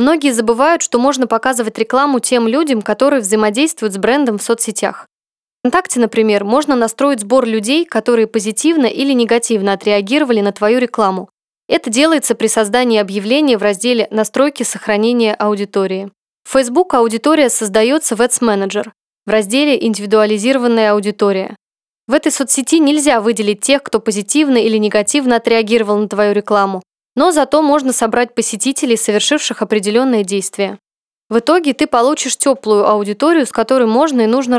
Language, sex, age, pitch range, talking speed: Russian, female, 20-39, 215-265 Hz, 145 wpm